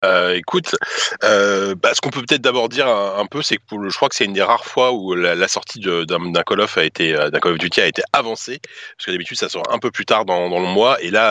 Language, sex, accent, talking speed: French, male, French, 310 wpm